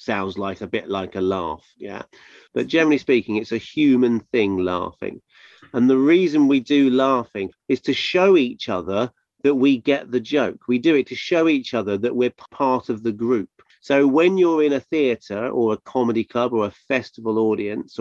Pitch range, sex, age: 115-140 Hz, male, 40-59